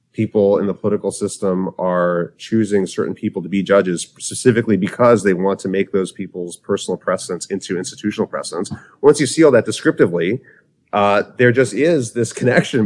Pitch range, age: 105-130 Hz, 30-49